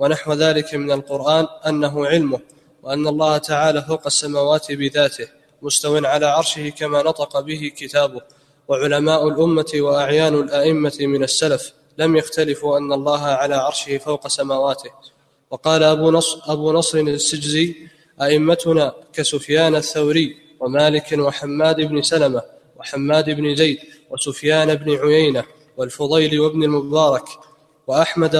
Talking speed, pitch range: 120 wpm, 145-155 Hz